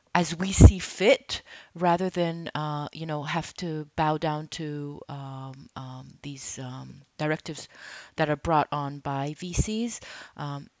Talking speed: 145 wpm